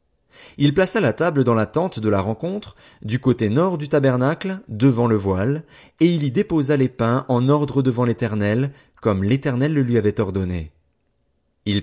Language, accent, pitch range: French, French, 105-145 Hz